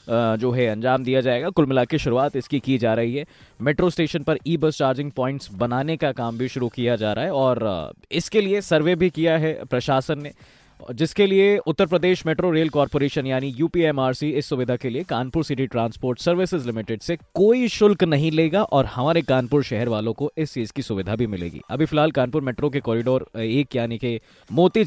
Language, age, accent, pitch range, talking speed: Hindi, 20-39, native, 115-165 Hz, 200 wpm